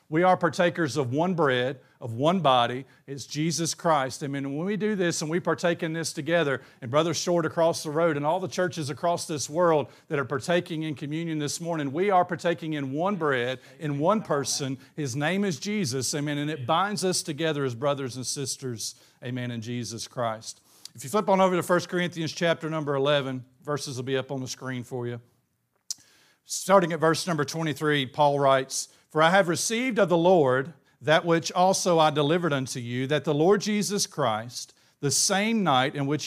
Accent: American